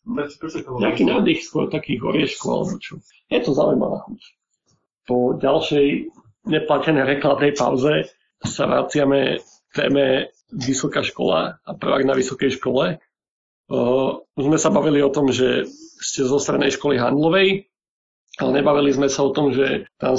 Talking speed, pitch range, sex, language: 140 wpm, 135-160 Hz, male, Slovak